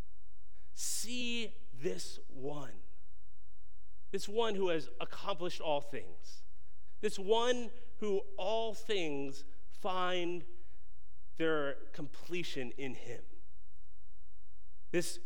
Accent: American